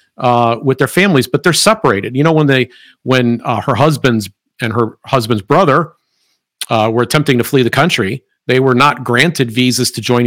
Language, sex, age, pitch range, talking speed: English, male, 50-69, 120-150 Hz, 195 wpm